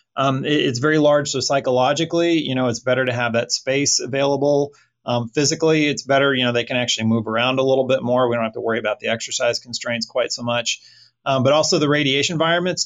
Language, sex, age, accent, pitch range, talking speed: English, male, 30-49, American, 120-145 Hz, 225 wpm